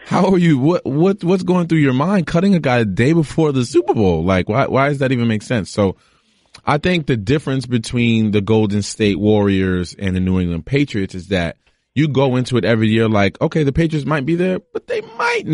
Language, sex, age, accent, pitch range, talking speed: English, male, 20-39, American, 95-125 Hz, 230 wpm